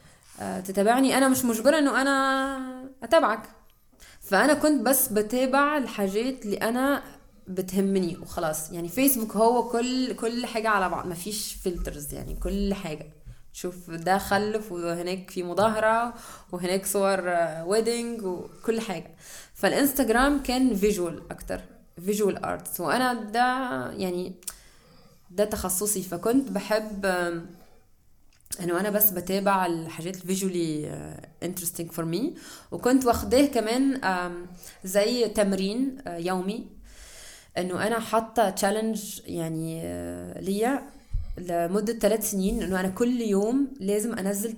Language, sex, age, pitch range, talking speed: Arabic, female, 20-39, 175-230 Hz, 115 wpm